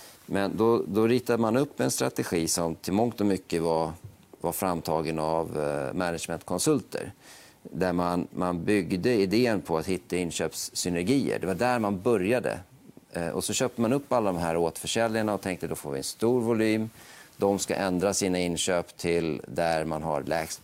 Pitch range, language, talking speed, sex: 85-110 Hz, Swedish, 170 wpm, male